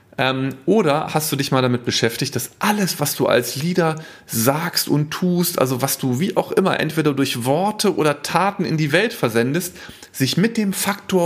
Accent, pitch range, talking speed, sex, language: German, 125-180 Hz, 185 wpm, male, German